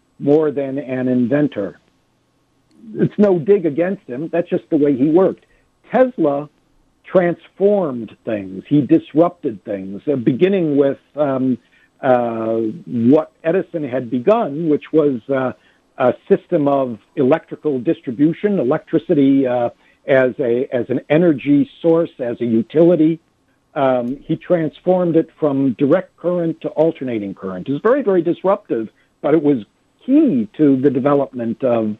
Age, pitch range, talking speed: 60-79, 130-170 Hz, 135 wpm